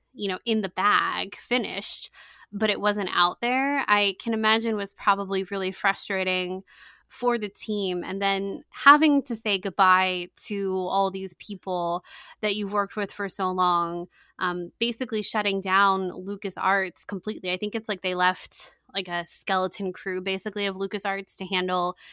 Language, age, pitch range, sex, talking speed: English, 20-39, 185-220 Hz, female, 160 wpm